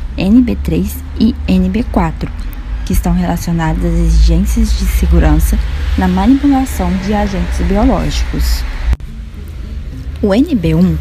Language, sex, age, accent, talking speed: Portuguese, female, 10-29, Brazilian, 95 wpm